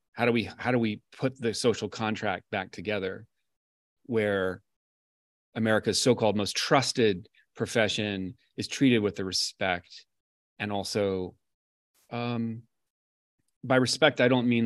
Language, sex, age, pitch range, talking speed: English, male, 30-49, 100-120 Hz, 125 wpm